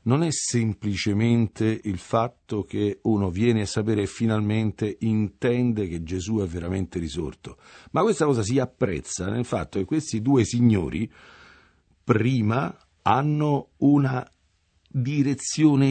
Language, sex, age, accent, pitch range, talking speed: English, male, 50-69, Italian, 90-125 Hz, 125 wpm